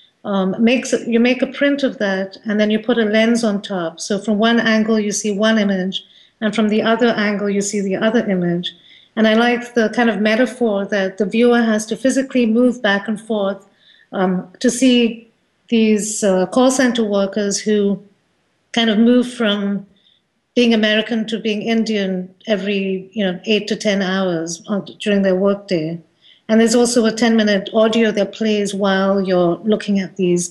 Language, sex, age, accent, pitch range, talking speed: English, female, 50-69, Indian, 190-225 Hz, 185 wpm